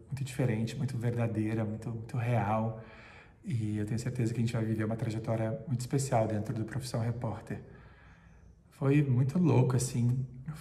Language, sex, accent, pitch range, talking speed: Portuguese, male, Brazilian, 110-130 Hz, 165 wpm